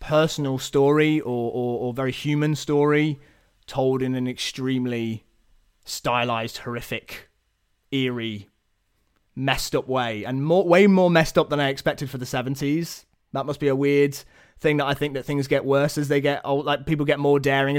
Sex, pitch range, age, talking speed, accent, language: male, 125-160 Hz, 20-39, 175 wpm, British, English